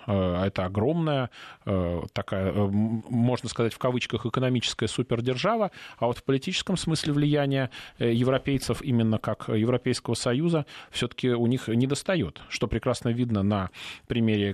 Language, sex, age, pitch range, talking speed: Russian, male, 30-49, 110-140 Hz, 125 wpm